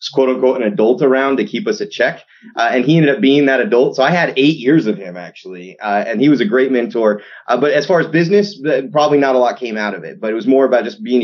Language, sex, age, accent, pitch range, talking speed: English, male, 30-49, American, 105-135 Hz, 290 wpm